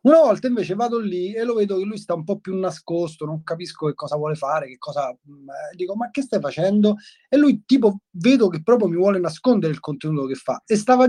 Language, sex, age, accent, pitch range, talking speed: Italian, male, 30-49, native, 145-210 Hz, 240 wpm